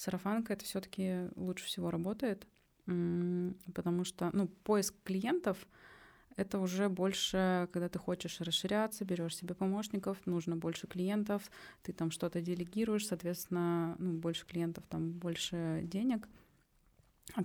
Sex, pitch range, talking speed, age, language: female, 175-200 Hz, 125 wpm, 20-39, Russian